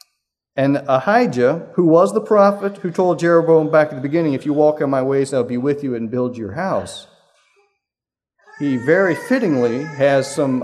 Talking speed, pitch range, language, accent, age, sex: 180 wpm, 125-175 Hz, English, American, 40-59, male